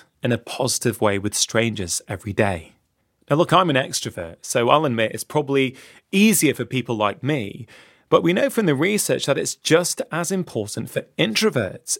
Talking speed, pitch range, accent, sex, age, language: 180 wpm, 130-180 Hz, British, male, 30-49, English